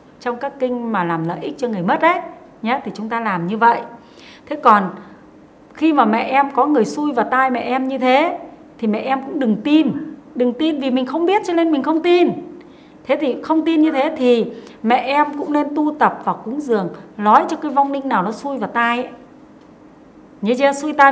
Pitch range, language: 230-290 Hz, Vietnamese